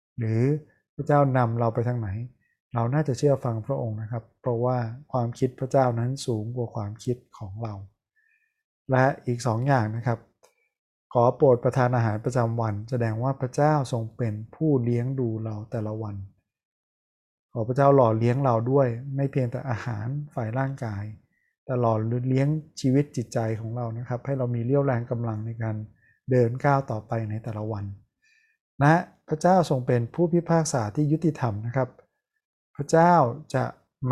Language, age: Thai, 20-39